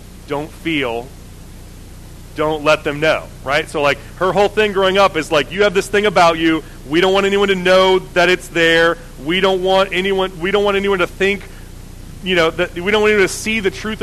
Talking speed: 220 wpm